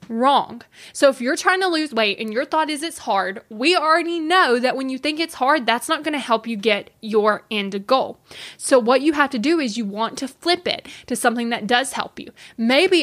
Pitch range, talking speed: 225-295 Hz, 240 wpm